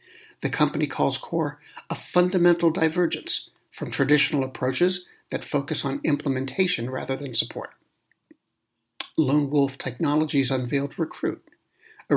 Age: 60-79